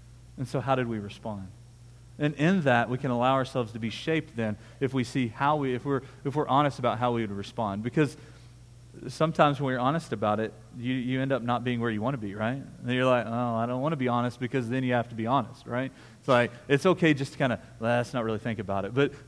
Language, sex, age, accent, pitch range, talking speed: English, male, 30-49, American, 120-155 Hz, 265 wpm